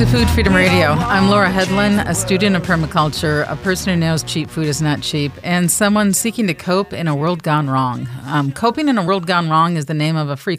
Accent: American